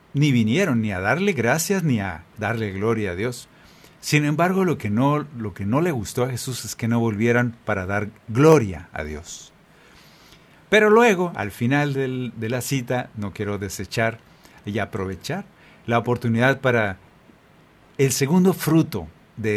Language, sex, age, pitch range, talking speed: Spanish, male, 50-69, 105-135 Hz, 155 wpm